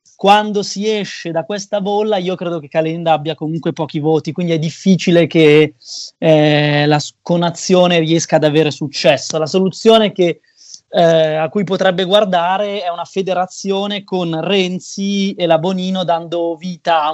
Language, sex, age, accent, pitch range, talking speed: Italian, male, 20-39, native, 160-190 Hz, 155 wpm